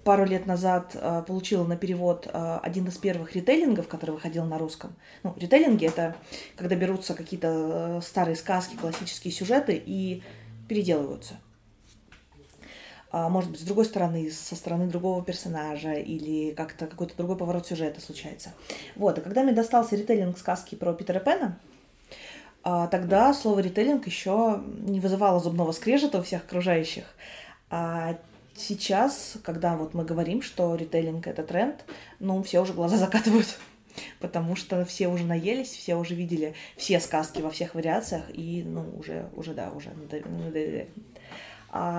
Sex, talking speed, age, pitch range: female, 140 wpm, 20-39, 165-195 Hz